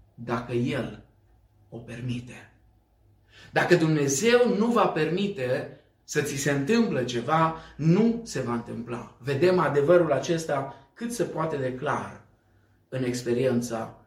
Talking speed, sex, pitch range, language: 120 wpm, male, 110-160 Hz, Romanian